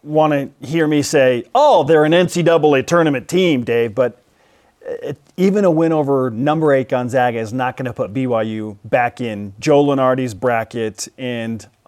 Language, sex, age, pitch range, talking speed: English, male, 30-49, 125-170 Hz, 160 wpm